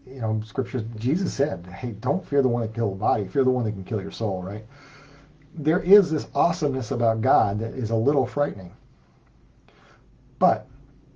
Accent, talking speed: American, 190 wpm